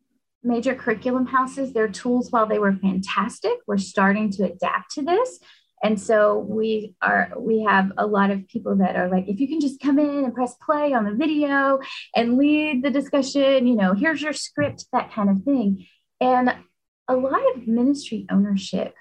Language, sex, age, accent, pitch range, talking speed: English, female, 20-39, American, 195-275 Hz, 185 wpm